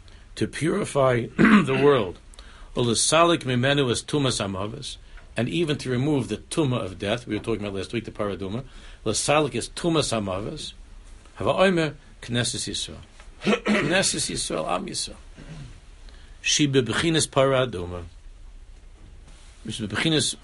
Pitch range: 95-130 Hz